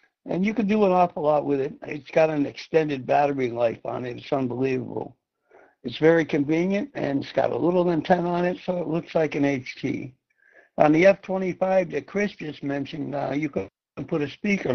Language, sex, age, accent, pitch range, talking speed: English, male, 60-79, American, 140-165 Hz, 200 wpm